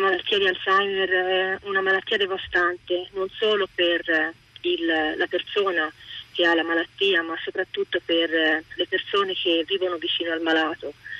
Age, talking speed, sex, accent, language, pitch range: 30-49, 140 wpm, female, native, Italian, 165-195 Hz